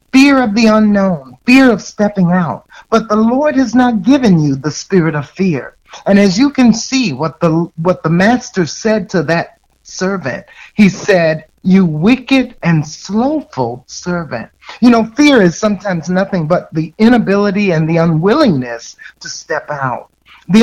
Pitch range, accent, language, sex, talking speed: 160-220 Hz, American, English, male, 165 wpm